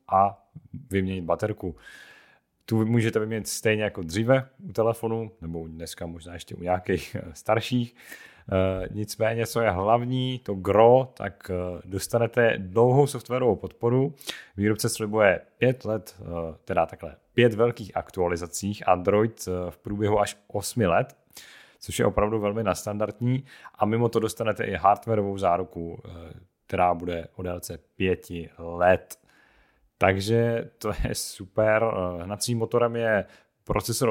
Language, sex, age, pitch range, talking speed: Czech, male, 30-49, 90-115 Hz, 125 wpm